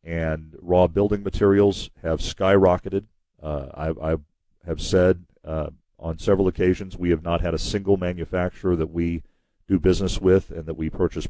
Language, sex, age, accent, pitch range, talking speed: English, male, 40-59, American, 85-100 Hz, 165 wpm